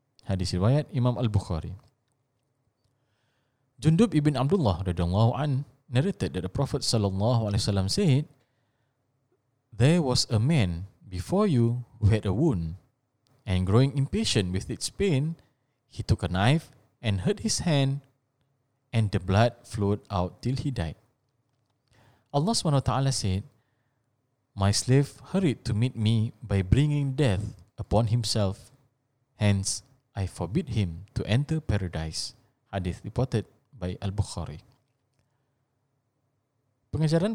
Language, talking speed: Malay, 115 wpm